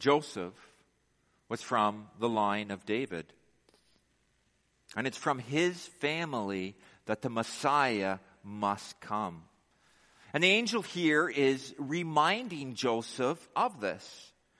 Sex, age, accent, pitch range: male, 50-69, American, 115-185 Hz